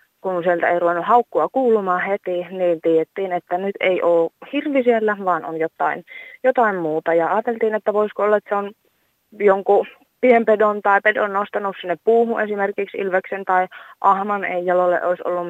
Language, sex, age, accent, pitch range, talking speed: Finnish, female, 20-39, native, 180-220 Hz, 165 wpm